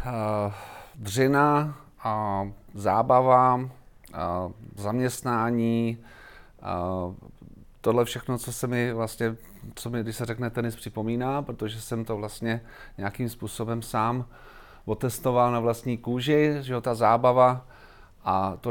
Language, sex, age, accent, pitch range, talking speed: Czech, male, 40-59, native, 110-120 Hz, 115 wpm